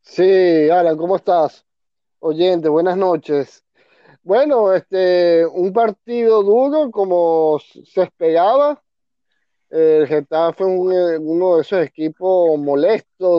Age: 30-49